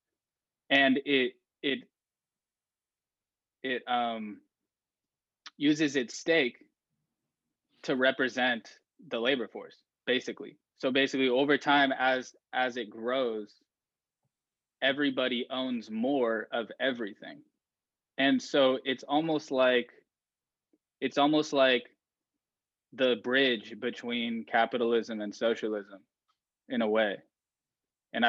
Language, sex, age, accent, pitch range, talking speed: English, male, 20-39, American, 115-135 Hz, 95 wpm